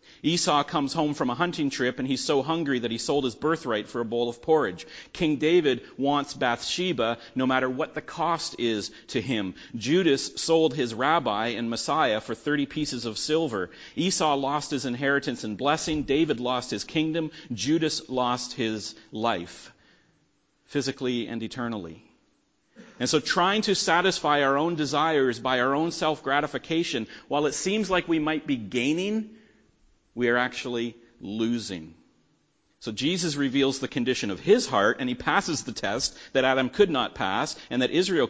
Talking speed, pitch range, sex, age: 165 wpm, 120-155 Hz, male, 40-59